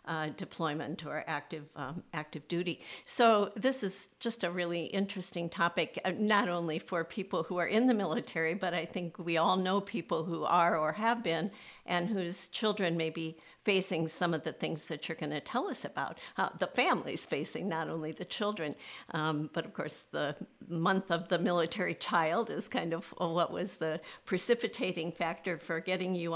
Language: English